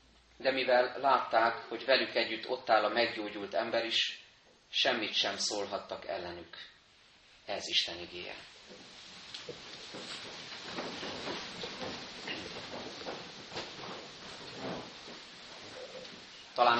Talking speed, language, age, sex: 70 wpm, Hungarian, 30-49, male